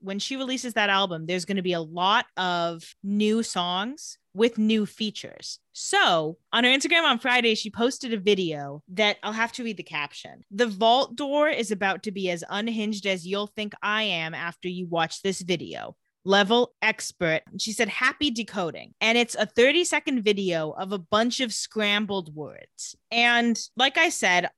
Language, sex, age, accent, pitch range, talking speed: English, female, 20-39, American, 175-225 Hz, 185 wpm